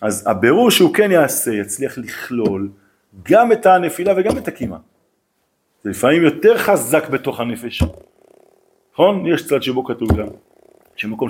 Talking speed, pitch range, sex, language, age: 140 wpm, 105-160 Hz, male, Hebrew, 40-59